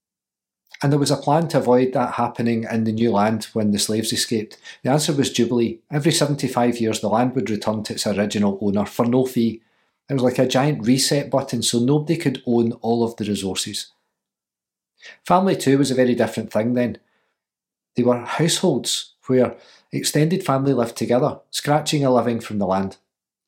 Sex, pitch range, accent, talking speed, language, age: male, 115-140 Hz, British, 185 wpm, English, 40-59